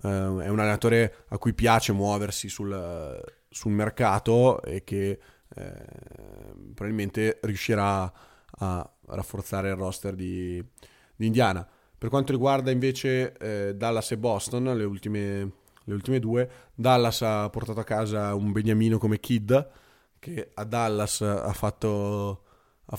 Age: 20-39